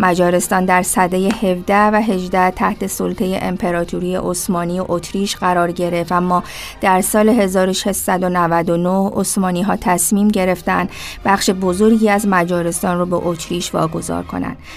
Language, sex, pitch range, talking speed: Persian, female, 170-190 Hz, 125 wpm